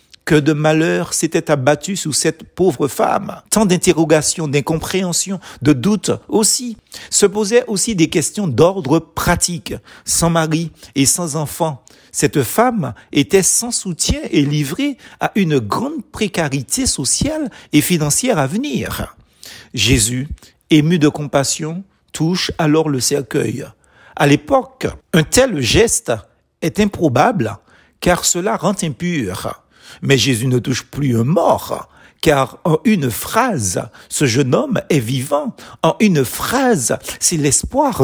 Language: French